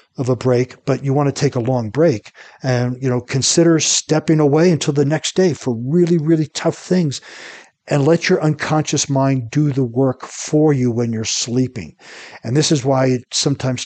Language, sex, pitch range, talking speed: English, male, 120-150 Hz, 195 wpm